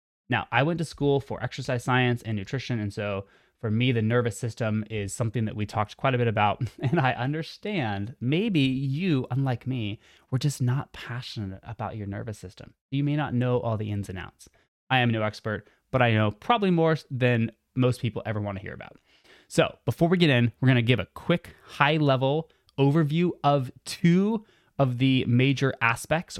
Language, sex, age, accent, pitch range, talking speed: English, male, 20-39, American, 105-135 Hz, 190 wpm